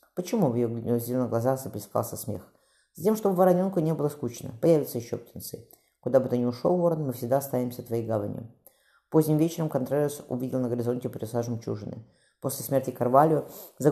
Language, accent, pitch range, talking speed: Russian, native, 120-145 Hz, 170 wpm